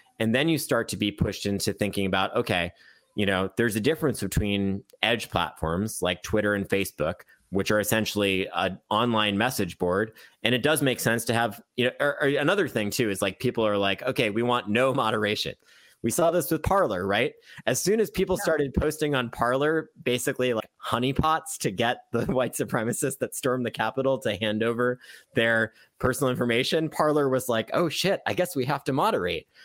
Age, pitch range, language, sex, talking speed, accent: 30-49, 100-135 Hz, English, male, 190 wpm, American